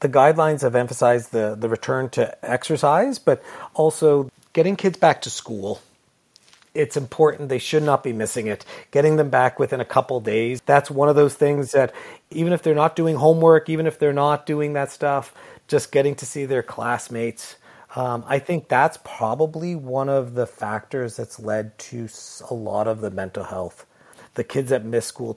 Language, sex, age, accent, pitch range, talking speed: English, male, 40-59, American, 110-145 Hz, 185 wpm